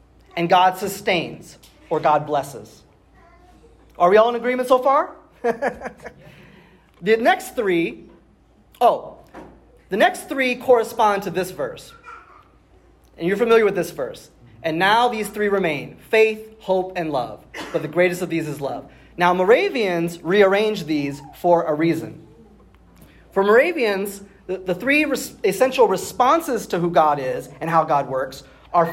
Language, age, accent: English, 30-49, American